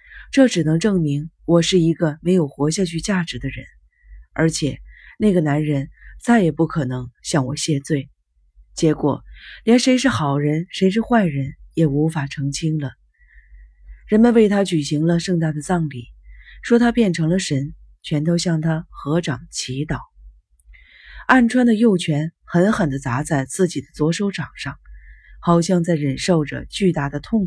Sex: female